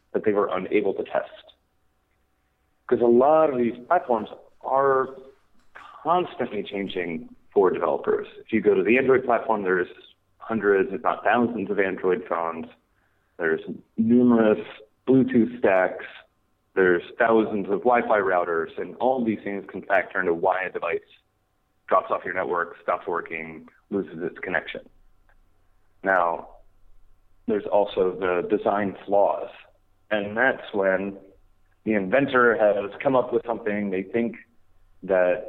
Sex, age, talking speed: male, 30-49, 135 wpm